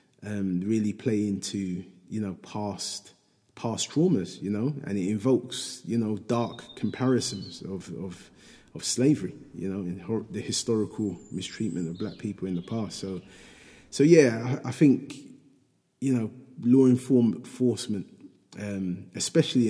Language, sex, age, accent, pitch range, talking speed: English, male, 30-49, British, 95-115 Hz, 145 wpm